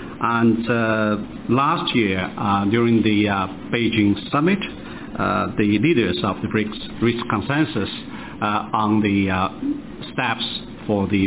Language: English